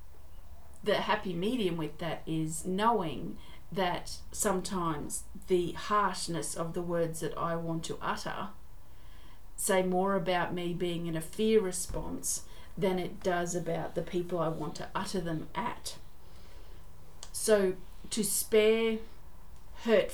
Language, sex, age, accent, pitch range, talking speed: English, female, 40-59, Australian, 160-190 Hz, 130 wpm